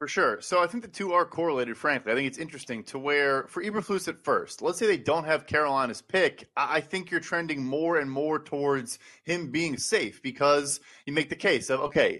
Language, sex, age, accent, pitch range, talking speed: English, male, 30-49, American, 145-170 Hz, 225 wpm